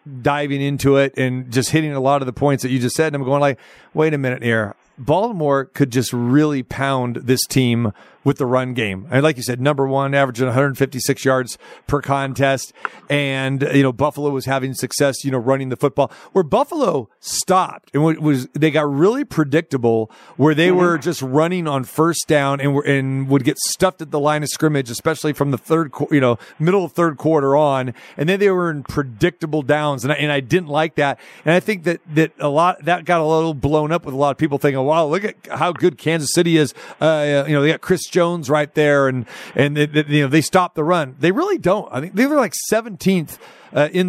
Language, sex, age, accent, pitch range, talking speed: English, male, 40-59, American, 140-170 Hz, 225 wpm